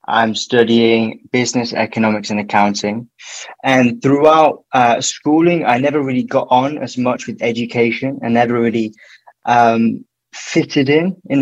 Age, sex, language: 20-39, male, English